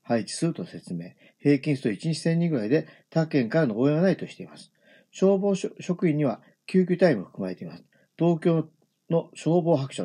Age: 50-69